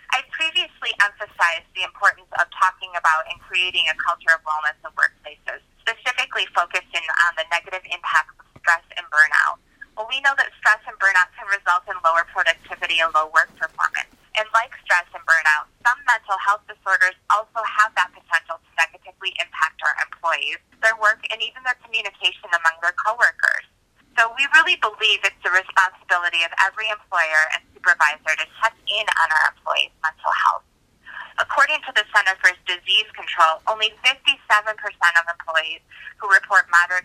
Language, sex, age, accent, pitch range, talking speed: English, female, 20-39, American, 165-215 Hz, 165 wpm